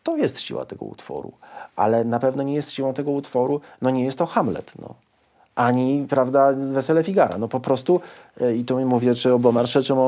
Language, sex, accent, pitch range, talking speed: Polish, male, native, 115-135 Hz, 210 wpm